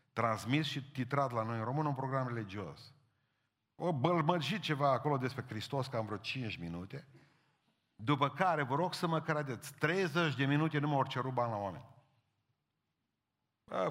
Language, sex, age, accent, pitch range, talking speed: Romanian, male, 50-69, native, 110-150 Hz, 160 wpm